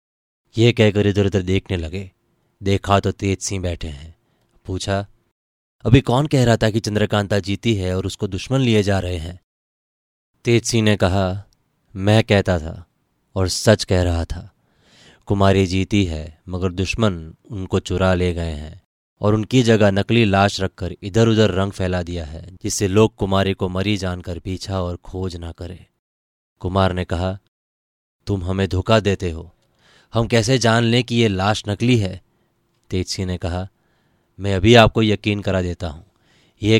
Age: 20-39